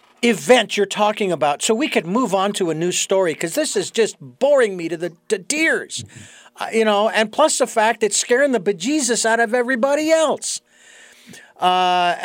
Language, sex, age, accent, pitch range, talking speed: English, male, 50-69, American, 185-235 Hz, 190 wpm